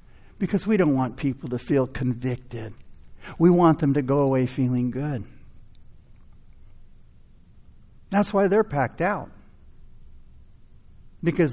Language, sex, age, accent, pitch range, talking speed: English, male, 60-79, American, 115-160 Hz, 115 wpm